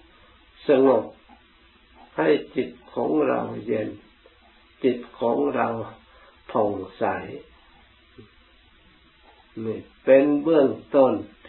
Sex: male